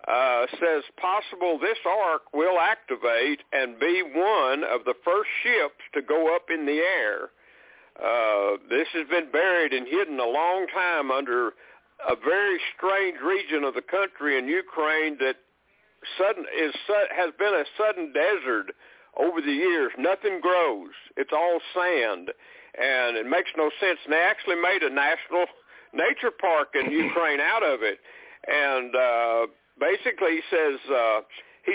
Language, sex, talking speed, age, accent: English, male, 155 wpm, 60-79, American